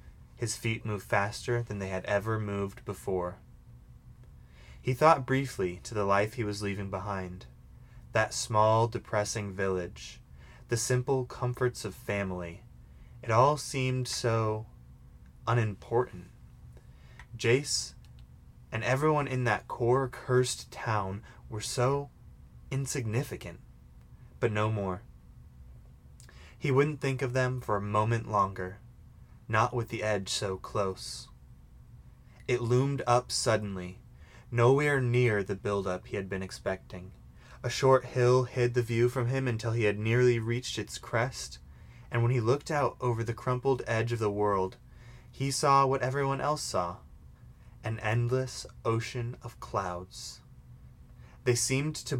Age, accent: 20-39, American